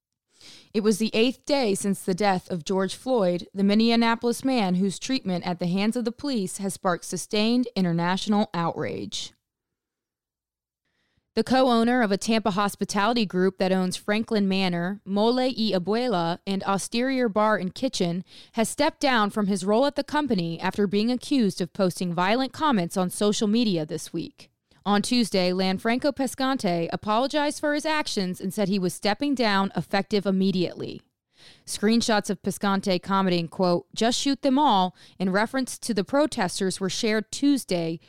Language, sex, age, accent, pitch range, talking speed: English, female, 20-39, American, 185-230 Hz, 160 wpm